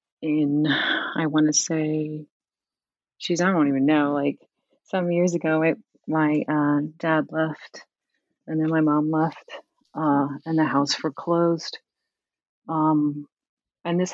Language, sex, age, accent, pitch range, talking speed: English, female, 30-49, American, 145-170 Hz, 135 wpm